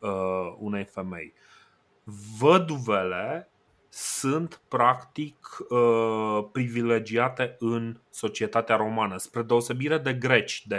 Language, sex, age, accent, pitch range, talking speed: Romanian, male, 30-49, native, 105-125 Hz, 80 wpm